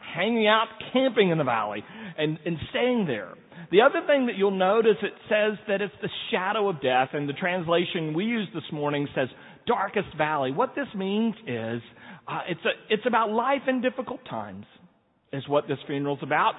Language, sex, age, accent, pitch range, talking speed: English, male, 40-59, American, 145-215 Hz, 190 wpm